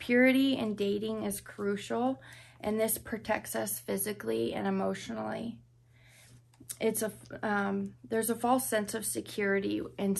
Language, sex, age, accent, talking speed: English, female, 20-39, American, 130 wpm